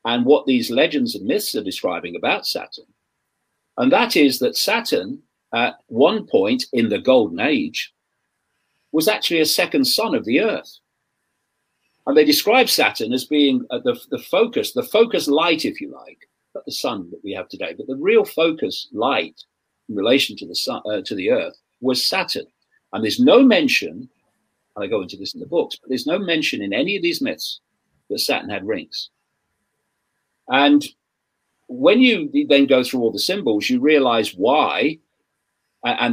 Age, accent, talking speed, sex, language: 40-59, British, 175 wpm, male, English